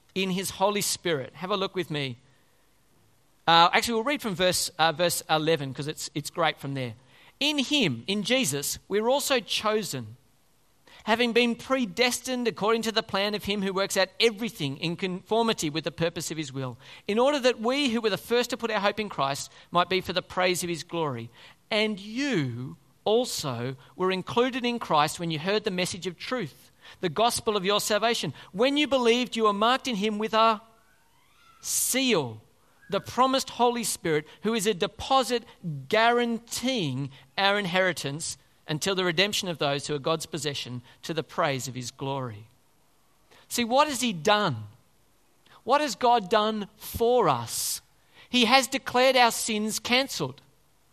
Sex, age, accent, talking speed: male, 40-59, Australian, 175 wpm